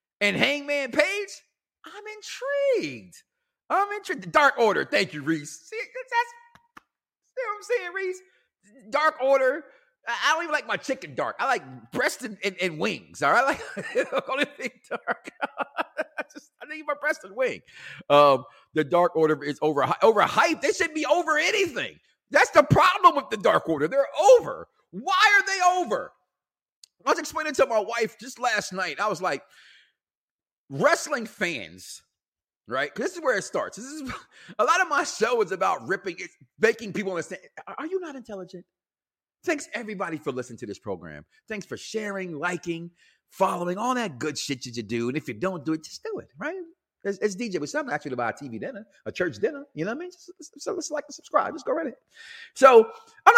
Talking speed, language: 190 wpm, English